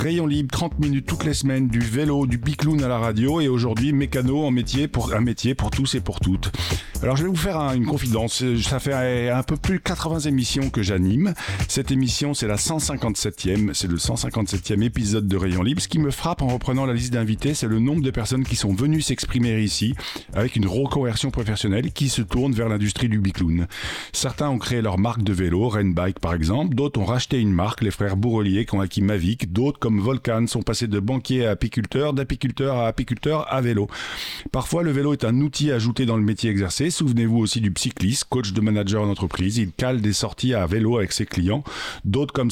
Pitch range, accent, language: 105-135 Hz, French, French